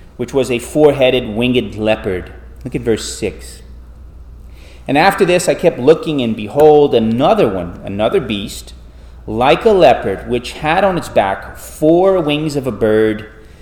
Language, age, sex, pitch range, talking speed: English, 30-49, male, 80-130 Hz, 160 wpm